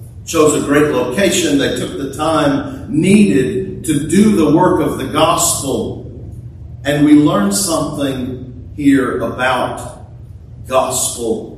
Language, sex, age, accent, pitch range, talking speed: English, male, 50-69, American, 110-150 Hz, 120 wpm